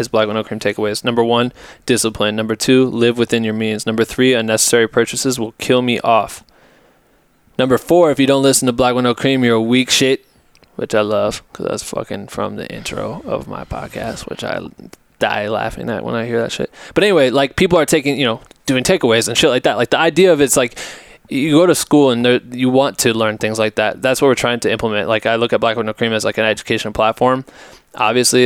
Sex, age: male, 20-39